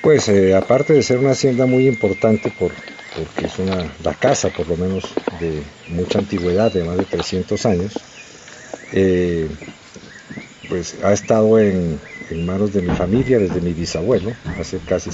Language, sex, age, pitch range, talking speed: Spanish, male, 50-69, 85-110 Hz, 155 wpm